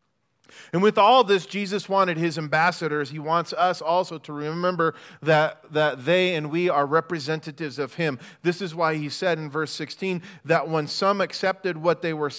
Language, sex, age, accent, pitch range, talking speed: English, male, 40-59, American, 150-190 Hz, 185 wpm